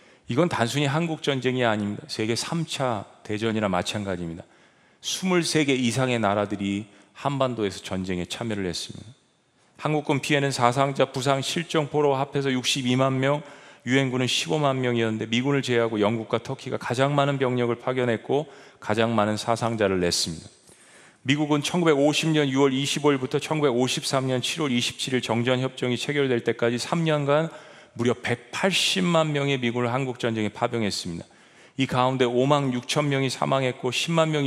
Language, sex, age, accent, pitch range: Korean, male, 40-59, native, 115-140 Hz